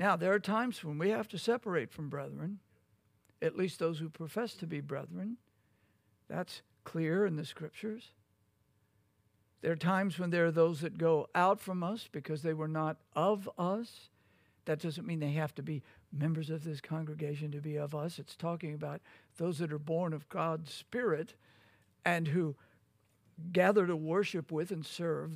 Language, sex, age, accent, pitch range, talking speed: English, male, 60-79, American, 130-170 Hz, 175 wpm